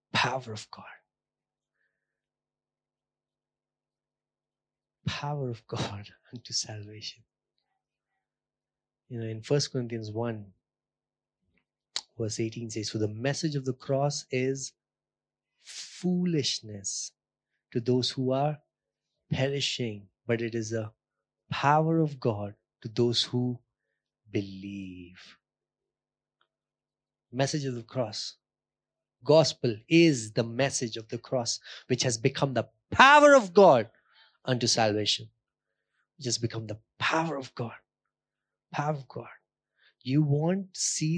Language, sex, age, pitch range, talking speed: English, male, 30-49, 115-145 Hz, 110 wpm